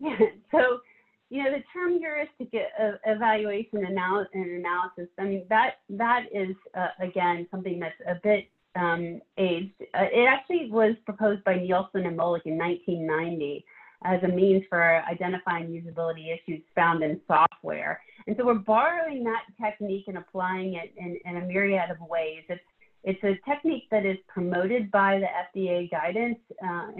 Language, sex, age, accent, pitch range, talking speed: English, female, 30-49, American, 175-220 Hz, 160 wpm